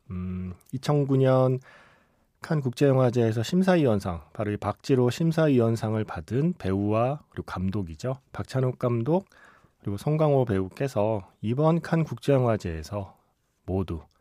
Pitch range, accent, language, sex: 105-150 Hz, native, Korean, male